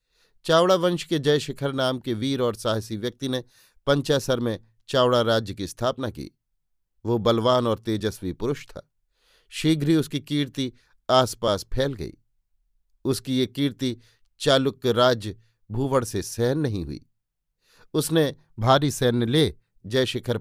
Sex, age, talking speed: male, 50-69, 140 wpm